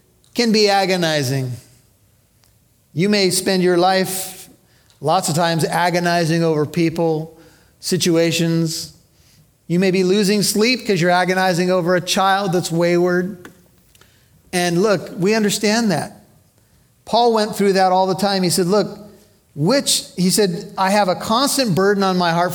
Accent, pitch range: American, 155-195 Hz